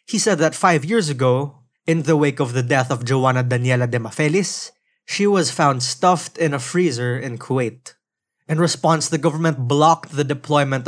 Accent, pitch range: native, 130-170 Hz